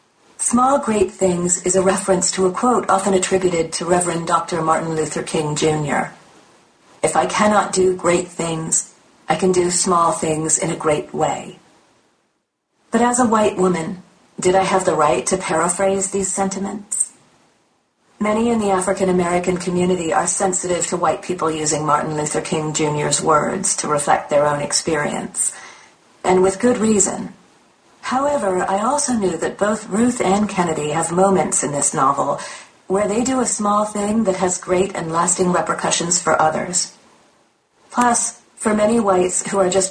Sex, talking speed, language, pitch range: female, 160 wpm, English, 170-200 Hz